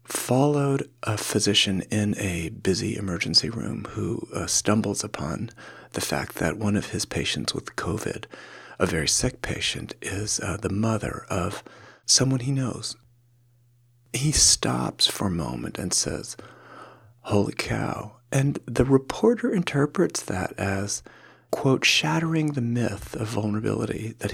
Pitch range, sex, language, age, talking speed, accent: 105-140 Hz, male, English, 40-59, 135 wpm, American